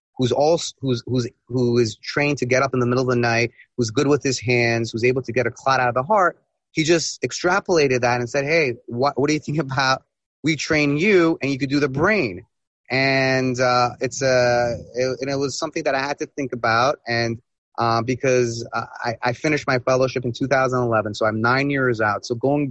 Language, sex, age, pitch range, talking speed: English, male, 30-49, 115-135 Hz, 225 wpm